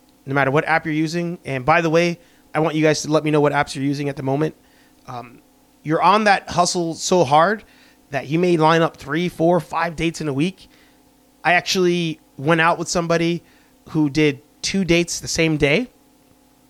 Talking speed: 205 wpm